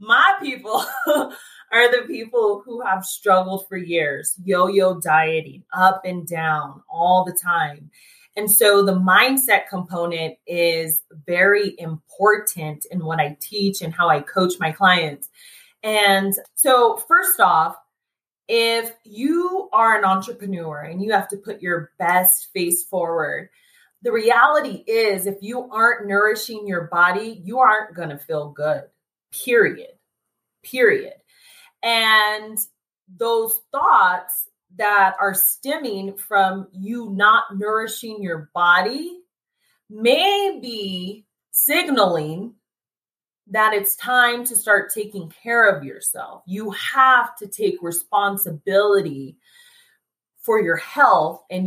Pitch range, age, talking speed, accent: 180-240 Hz, 20-39, 120 wpm, American